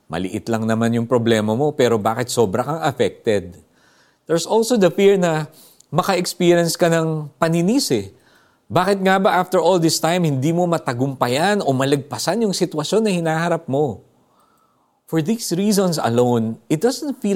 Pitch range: 110-170 Hz